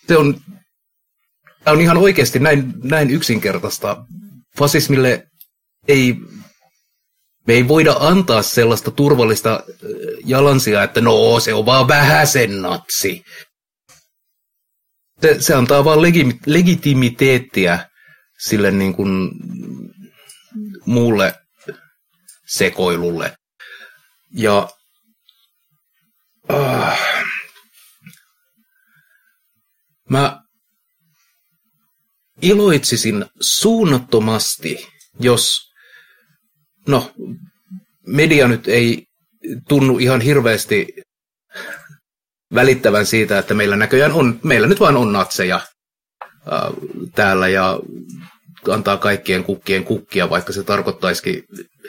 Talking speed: 80 wpm